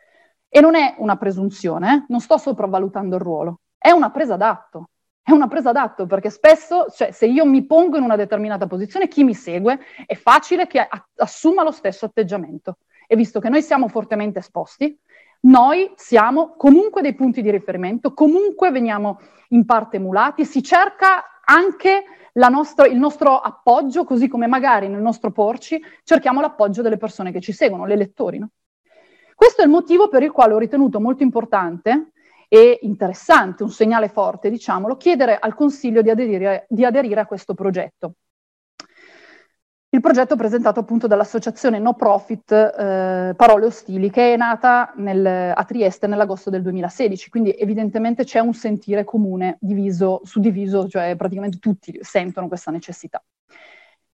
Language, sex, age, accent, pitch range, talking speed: Italian, female, 30-49, native, 200-290 Hz, 160 wpm